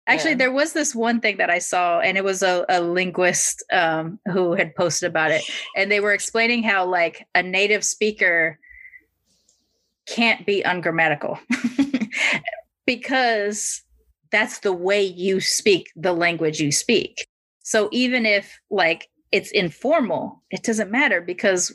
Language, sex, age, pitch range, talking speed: English, female, 30-49, 175-230 Hz, 145 wpm